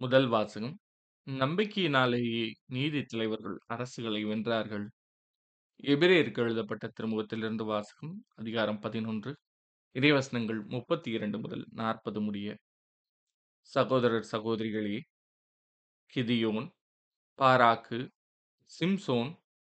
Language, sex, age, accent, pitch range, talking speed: Tamil, male, 20-39, native, 110-130 Hz, 75 wpm